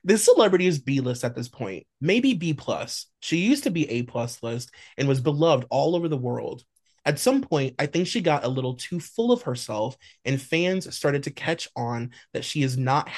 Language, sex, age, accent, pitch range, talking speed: English, male, 20-39, American, 125-165 Hz, 210 wpm